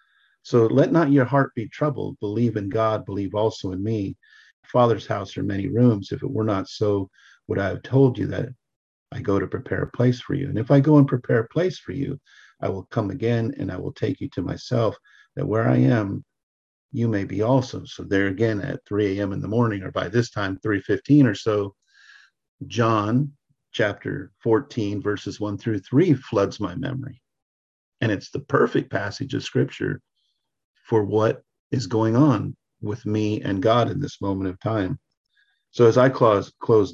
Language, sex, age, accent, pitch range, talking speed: English, male, 50-69, American, 100-135 Hz, 195 wpm